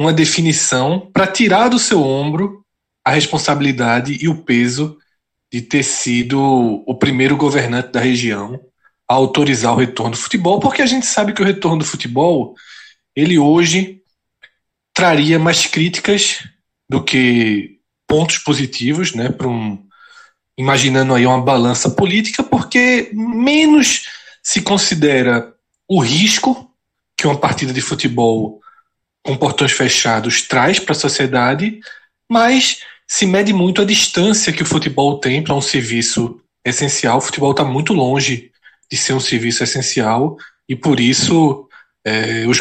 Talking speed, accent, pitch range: 135 wpm, Brazilian, 130-180 Hz